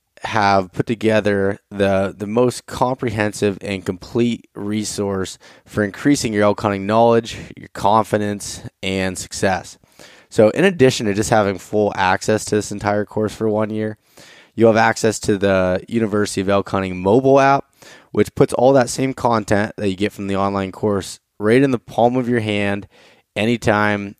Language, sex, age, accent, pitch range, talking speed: English, male, 20-39, American, 100-115 Hz, 165 wpm